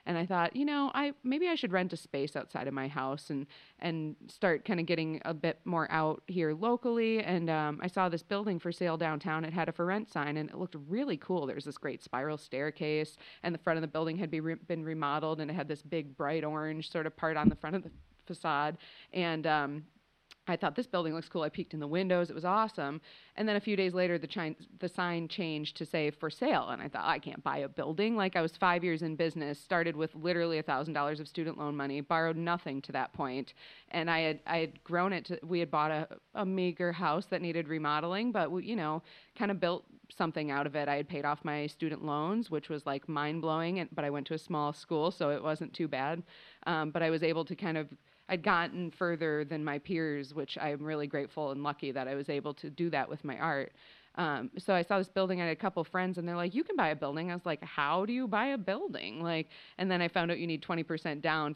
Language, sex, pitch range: English, female, 150-180 Hz